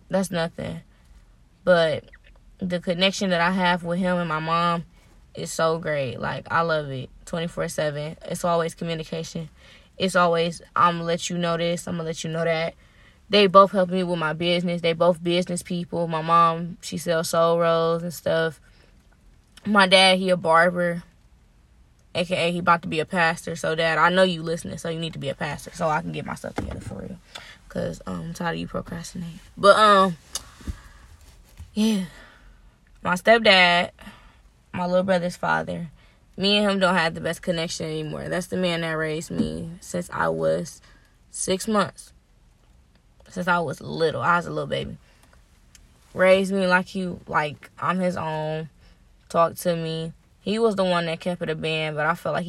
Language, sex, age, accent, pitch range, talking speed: English, female, 10-29, American, 160-180 Hz, 185 wpm